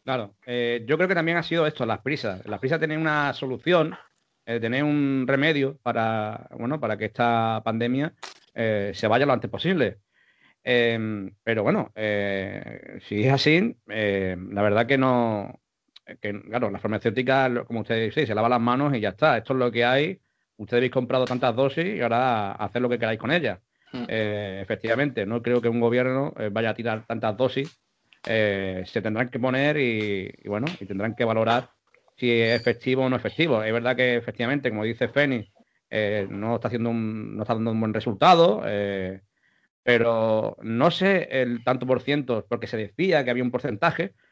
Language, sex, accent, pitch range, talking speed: Spanish, male, Spanish, 110-135 Hz, 185 wpm